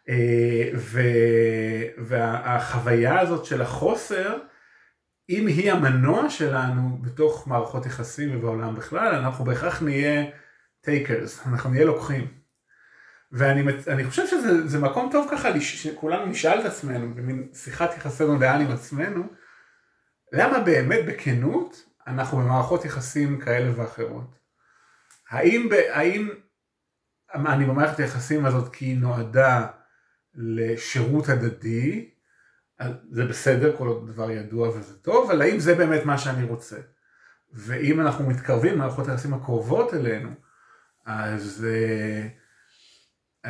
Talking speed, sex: 110 wpm, male